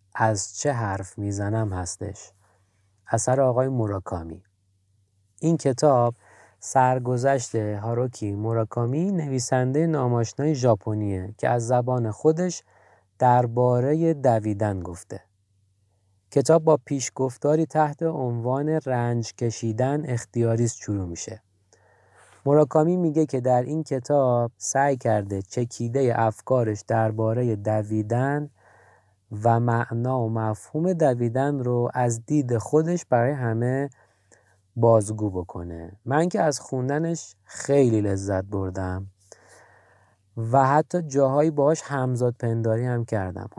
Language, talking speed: Persian, 100 wpm